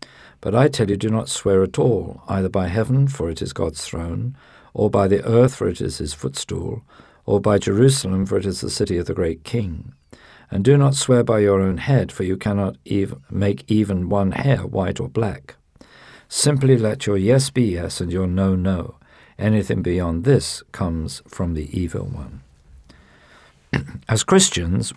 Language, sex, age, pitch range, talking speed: English, male, 50-69, 85-110 Hz, 185 wpm